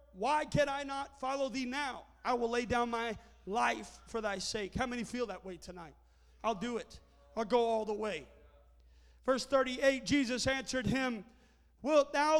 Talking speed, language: 180 wpm, English